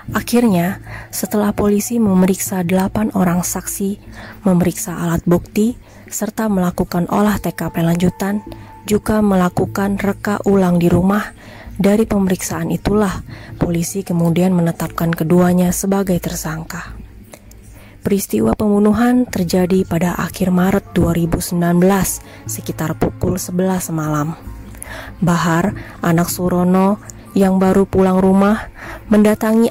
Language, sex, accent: Indonesian, female, native